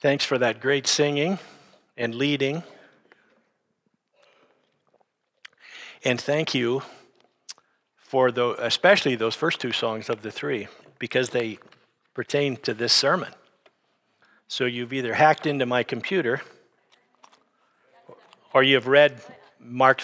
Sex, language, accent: male, English, American